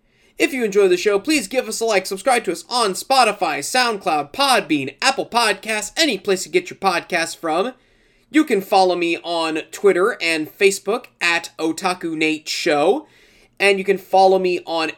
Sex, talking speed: male, 180 wpm